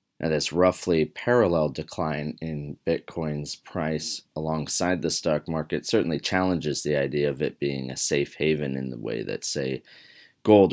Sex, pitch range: male, 75-95 Hz